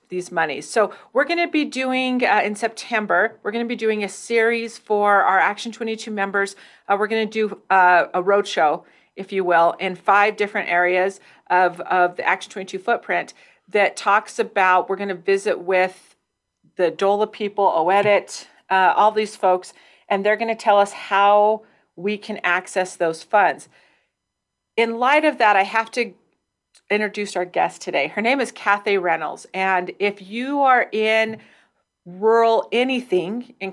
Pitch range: 190-230 Hz